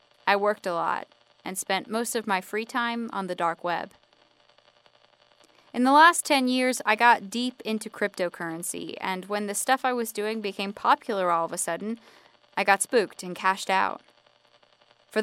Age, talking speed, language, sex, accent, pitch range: 20-39, 175 wpm, English, female, American, 185-240 Hz